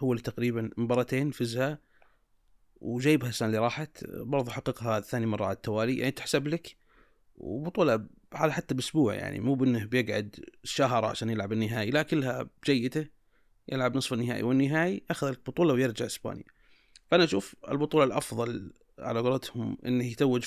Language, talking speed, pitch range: Arabic, 140 wpm, 115-140 Hz